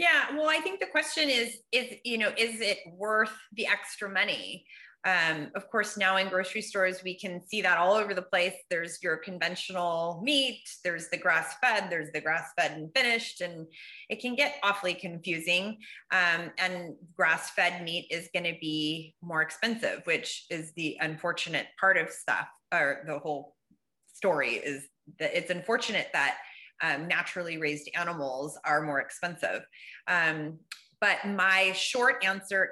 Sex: female